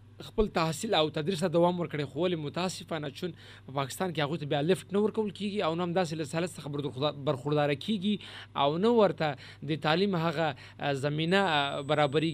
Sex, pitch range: male, 140-175 Hz